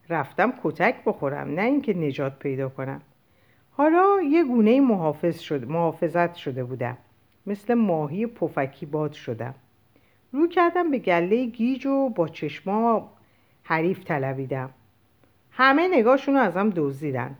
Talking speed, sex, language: 120 wpm, female, Persian